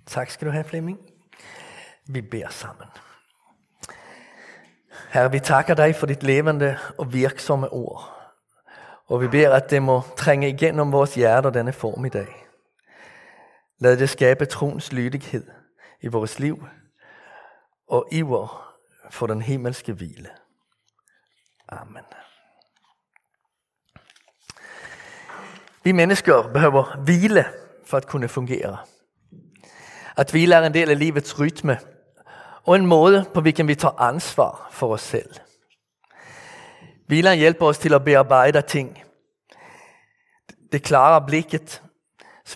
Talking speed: 120 wpm